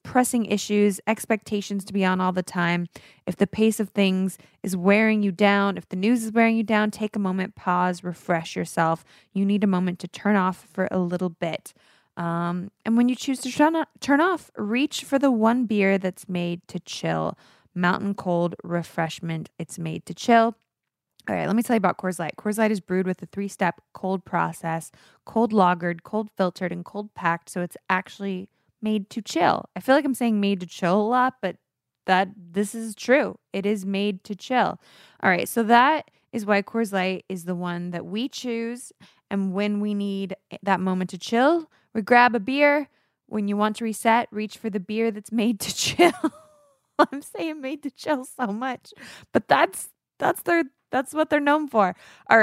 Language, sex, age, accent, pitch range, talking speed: English, female, 20-39, American, 185-235 Hz, 200 wpm